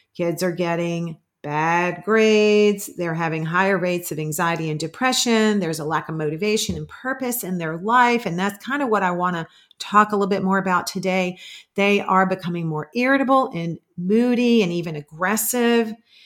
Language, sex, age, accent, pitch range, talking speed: English, female, 40-59, American, 170-210 Hz, 175 wpm